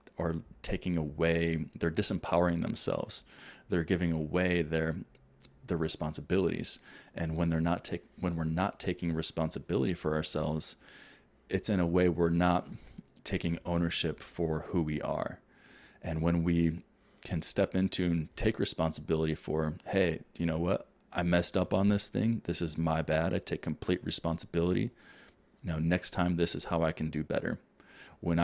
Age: 20-39